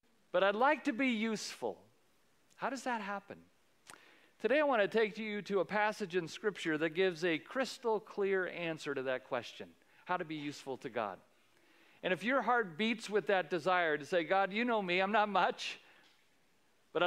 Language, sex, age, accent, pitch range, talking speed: English, male, 50-69, American, 150-210 Hz, 190 wpm